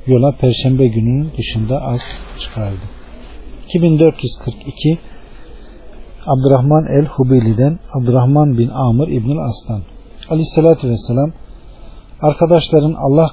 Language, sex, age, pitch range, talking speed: Turkish, male, 50-69, 115-150 Hz, 80 wpm